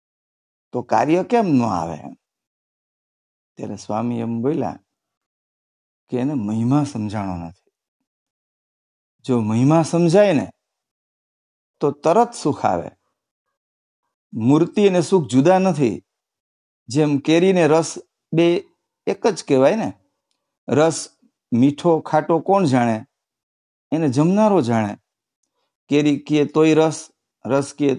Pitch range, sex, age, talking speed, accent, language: 115-165 Hz, male, 50-69, 70 wpm, Indian, English